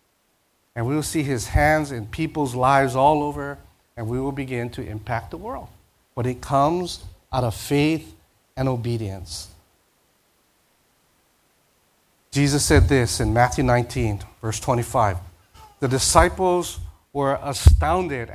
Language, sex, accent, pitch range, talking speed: English, male, American, 105-145 Hz, 130 wpm